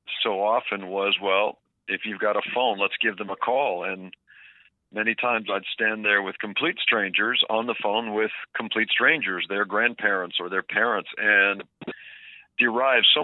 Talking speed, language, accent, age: 170 wpm, English, American, 50-69